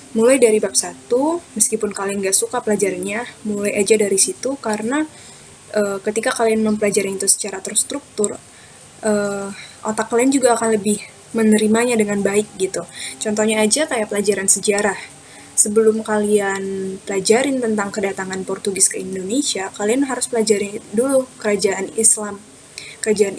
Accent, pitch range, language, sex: native, 200-240 Hz, Indonesian, female